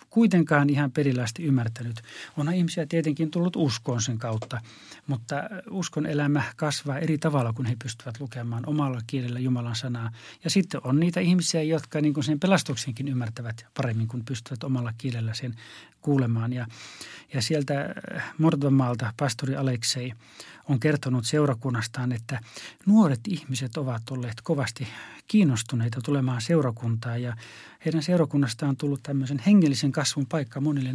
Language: Finnish